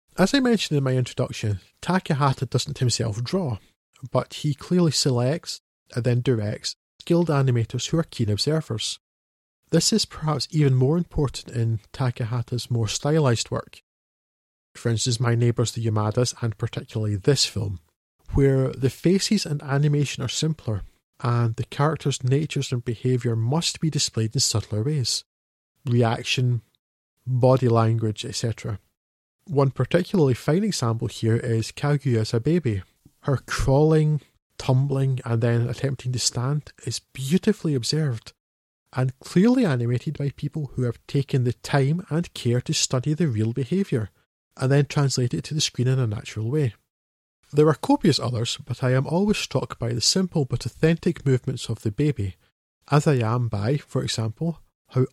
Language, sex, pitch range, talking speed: English, male, 115-150 Hz, 155 wpm